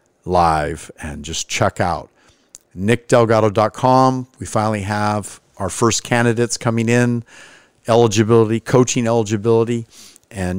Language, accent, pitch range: English, American, 100-130 Hz